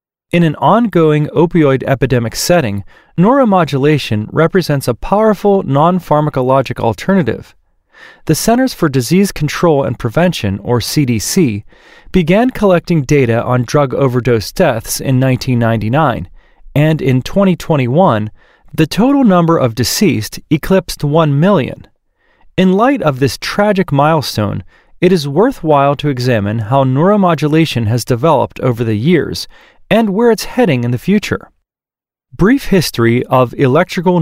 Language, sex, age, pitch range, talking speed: English, male, 30-49, 125-185 Hz, 125 wpm